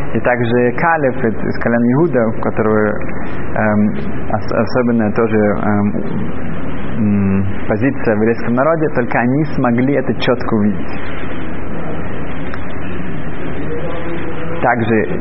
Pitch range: 110-135 Hz